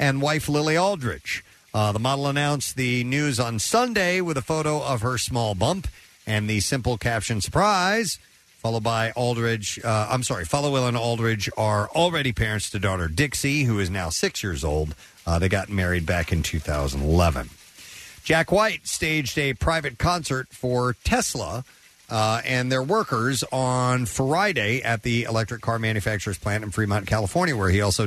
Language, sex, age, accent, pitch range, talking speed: English, male, 50-69, American, 105-135 Hz, 170 wpm